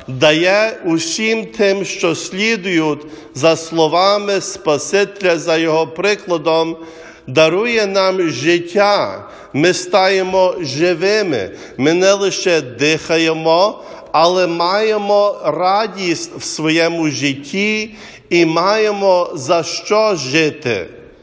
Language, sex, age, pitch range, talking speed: English, male, 50-69, 165-205 Hz, 90 wpm